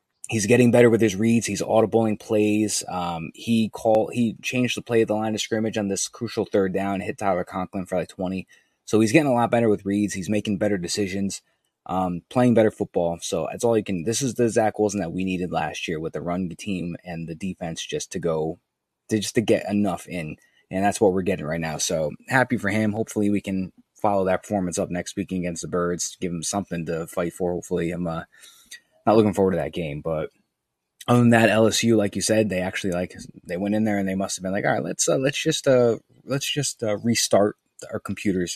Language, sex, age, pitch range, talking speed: English, male, 20-39, 90-110 Hz, 235 wpm